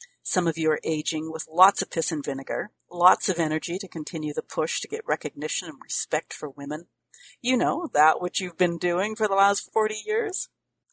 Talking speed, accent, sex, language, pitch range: 205 wpm, American, female, English, 160-245 Hz